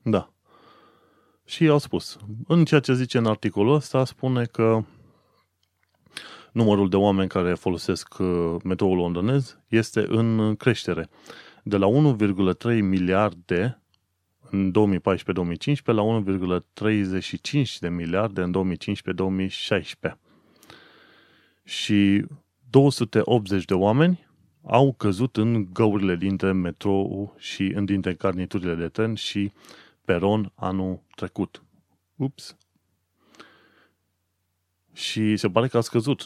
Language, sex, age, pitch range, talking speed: Romanian, male, 30-49, 95-125 Hz, 100 wpm